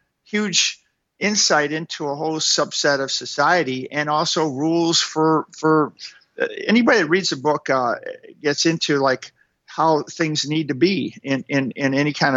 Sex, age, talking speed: male, 50-69, 155 wpm